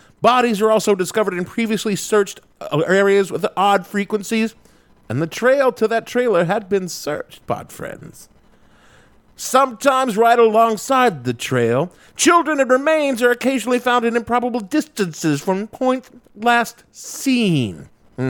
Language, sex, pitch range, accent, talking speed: English, male, 165-230 Hz, American, 130 wpm